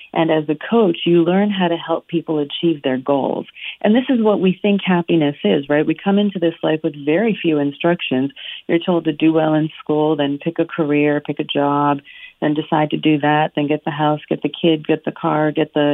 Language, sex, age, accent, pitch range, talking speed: English, female, 40-59, American, 150-175 Hz, 235 wpm